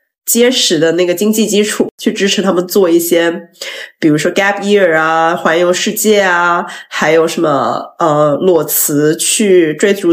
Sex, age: female, 20-39